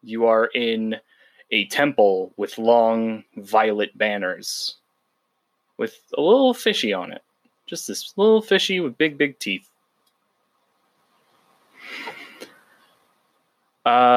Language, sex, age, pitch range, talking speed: English, male, 20-39, 105-160 Hz, 100 wpm